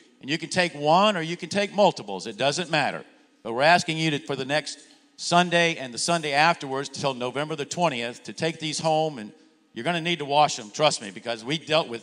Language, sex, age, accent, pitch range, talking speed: English, male, 50-69, American, 135-170 Hz, 240 wpm